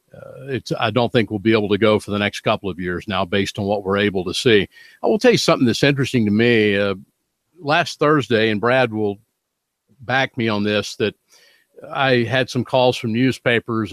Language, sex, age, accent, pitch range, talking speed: English, male, 50-69, American, 110-130 Hz, 210 wpm